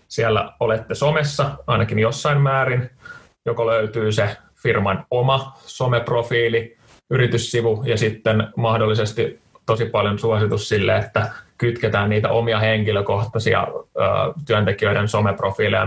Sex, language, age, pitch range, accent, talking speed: male, Finnish, 20-39, 105-125 Hz, native, 105 wpm